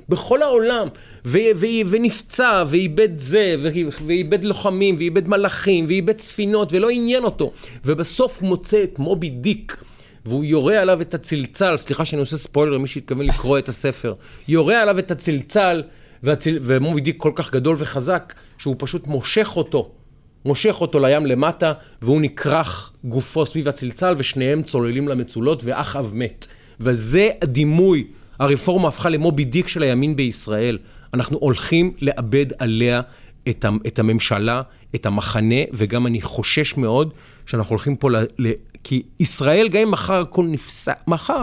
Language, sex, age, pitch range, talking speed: Hebrew, male, 30-49, 120-170 Hz, 140 wpm